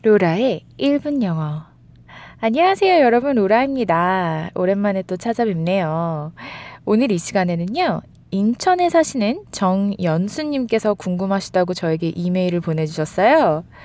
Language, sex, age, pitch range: Korean, female, 20-39, 175-245 Hz